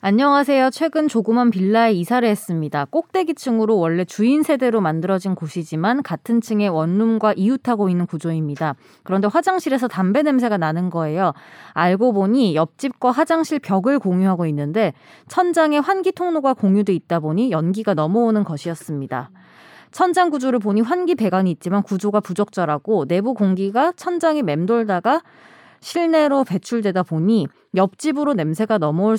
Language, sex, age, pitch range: Korean, female, 20-39, 175-270 Hz